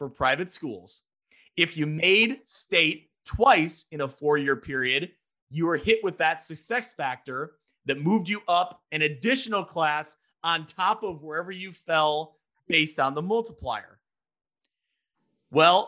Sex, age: male, 30-49